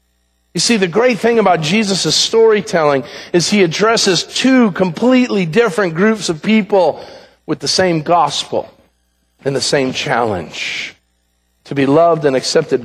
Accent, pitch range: American, 135-200 Hz